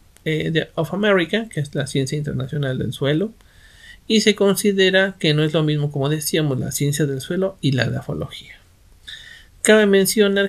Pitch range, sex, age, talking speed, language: 130-175 Hz, male, 50-69, 170 wpm, Spanish